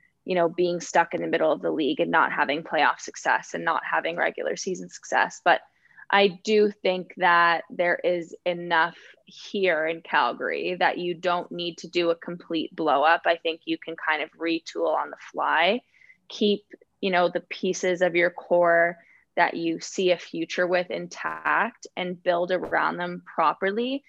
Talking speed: 180 wpm